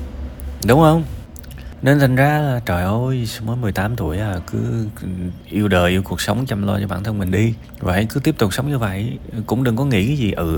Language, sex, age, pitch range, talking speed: Vietnamese, male, 20-39, 85-115 Hz, 220 wpm